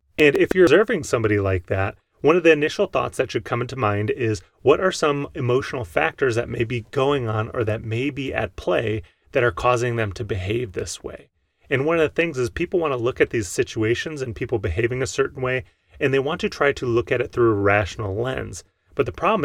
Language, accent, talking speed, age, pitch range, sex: English, American, 240 wpm, 30-49, 105-130 Hz, male